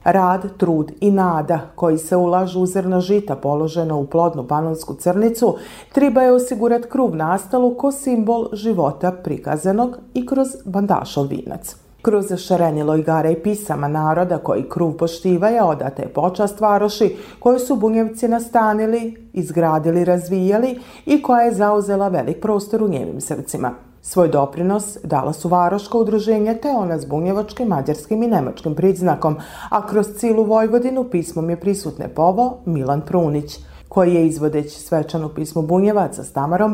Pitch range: 165-230 Hz